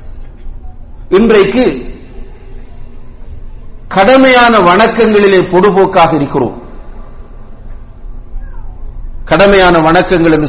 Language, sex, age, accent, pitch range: English, male, 50-69, Indian, 130-210 Hz